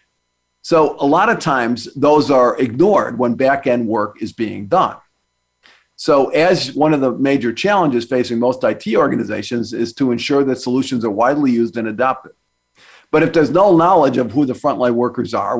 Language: English